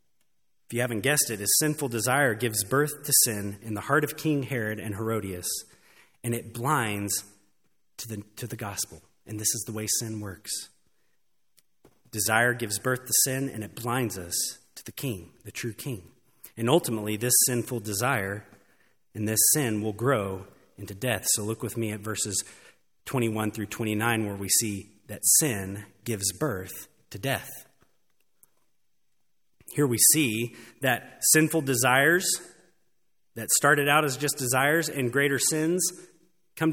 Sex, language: male, English